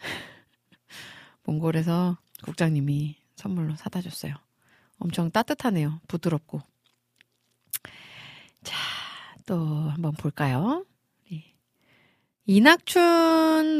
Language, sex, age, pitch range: Korean, female, 40-59, 150-220 Hz